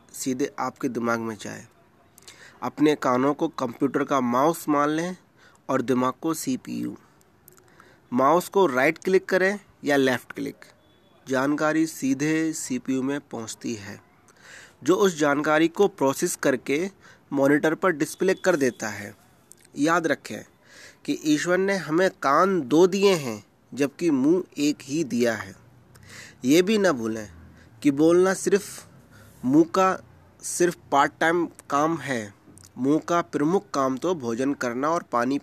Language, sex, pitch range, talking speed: Urdu, male, 125-175 Hz, 150 wpm